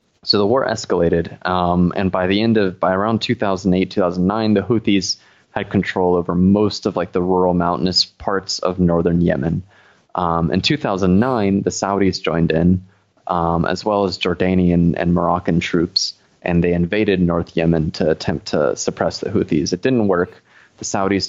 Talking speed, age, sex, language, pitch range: 165 wpm, 20-39, male, English, 85-100 Hz